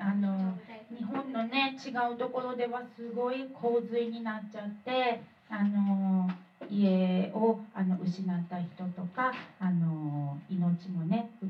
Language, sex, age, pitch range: Japanese, female, 40-59, 175-225 Hz